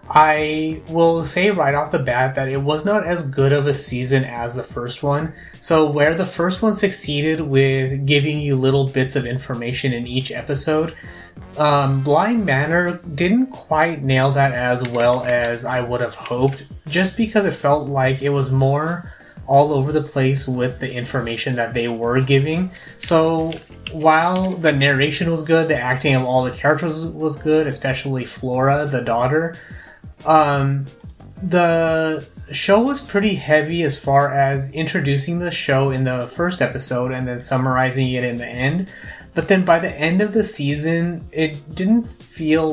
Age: 20-39